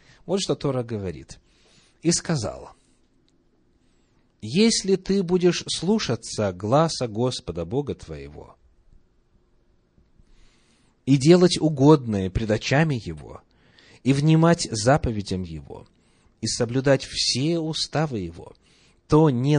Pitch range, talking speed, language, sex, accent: 100-150 Hz, 95 wpm, Russian, male, native